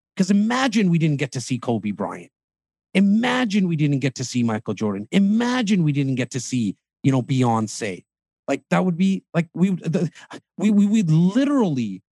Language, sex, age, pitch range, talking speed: English, male, 30-49, 110-140 Hz, 185 wpm